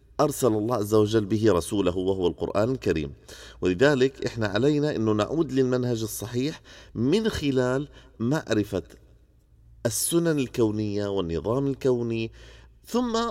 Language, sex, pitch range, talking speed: Arabic, male, 100-140 Hz, 110 wpm